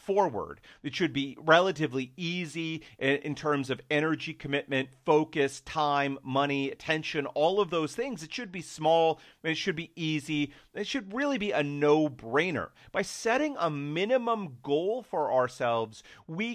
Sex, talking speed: male, 150 wpm